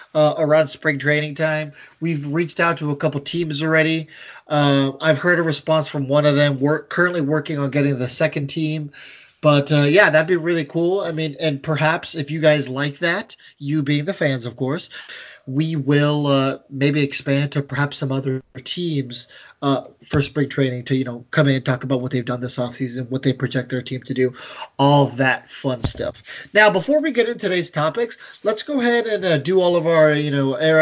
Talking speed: 210 wpm